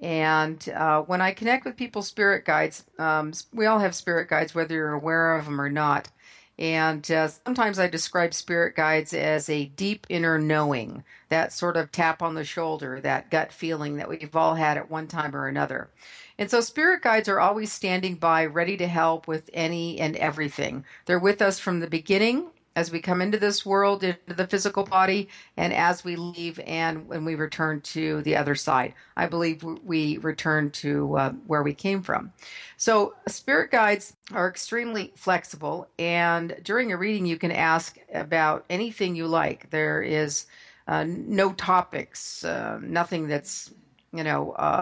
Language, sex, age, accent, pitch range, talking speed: English, female, 50-69, American, 155-195 Hz, 180 wpm